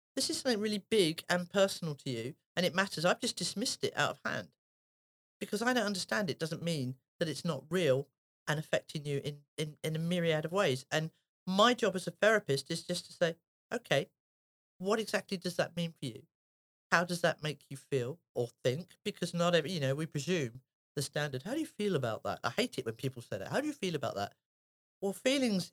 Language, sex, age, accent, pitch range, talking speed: English, male, 40-59, British, 145-185 Hz, 225 wpm